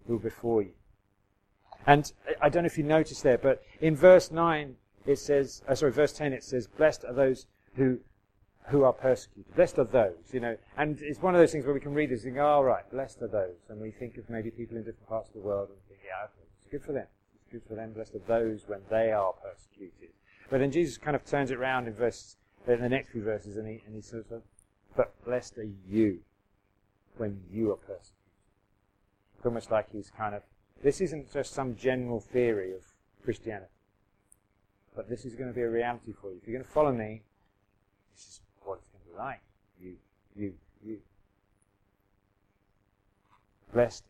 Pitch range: 100-135 Hz